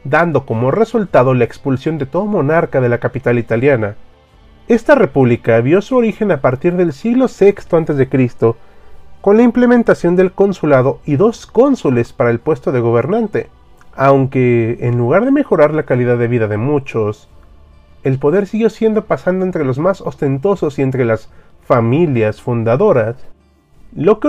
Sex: male